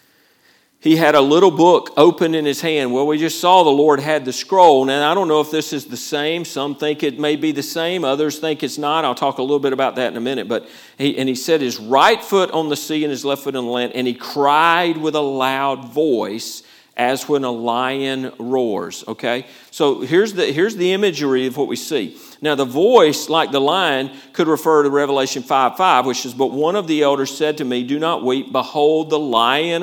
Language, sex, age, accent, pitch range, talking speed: English, male, 50-69, American, 130-155 Hz, 235 wpm